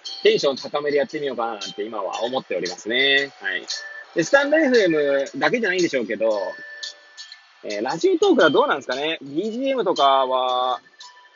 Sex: male